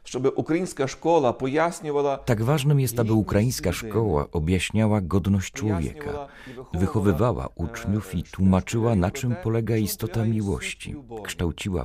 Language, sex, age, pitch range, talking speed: Polish, male, 40-59, 90-120 Hz, 95 wpm